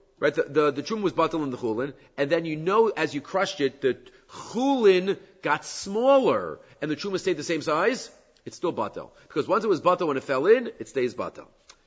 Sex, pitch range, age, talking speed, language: male, 140-195 Hz, 40-59, 220 wpm, English